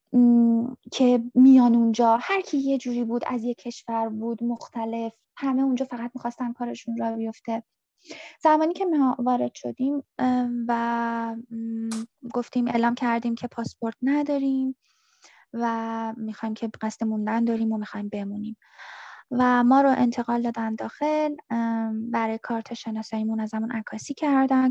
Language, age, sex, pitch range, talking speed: Persian, 20-39, female, 230-260 Hz, 130 wpm